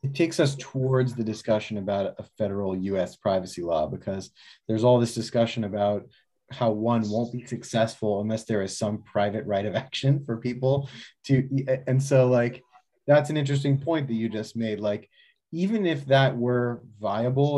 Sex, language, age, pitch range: male, English, 30-49, 110-135 Hz